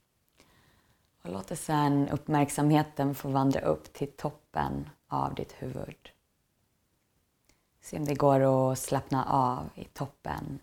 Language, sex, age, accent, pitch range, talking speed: Swedish, female, 20-39, native, 130-140 Hz, 120 wpm